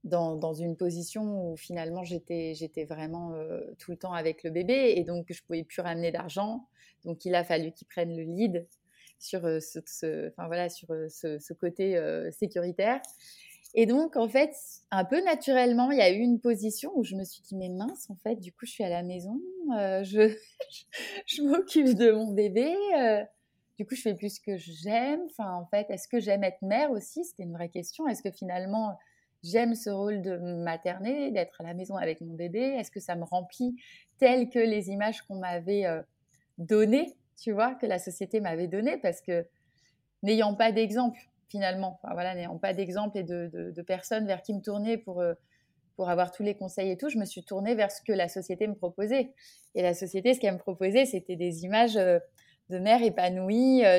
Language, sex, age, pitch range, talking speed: French, female, 20-39, 175-230 Hz, 210 wpm